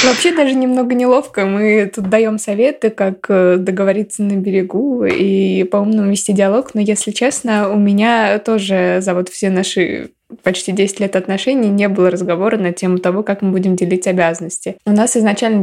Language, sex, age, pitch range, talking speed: Russian, female, 20-39, 195-225 Hz, 170 wpm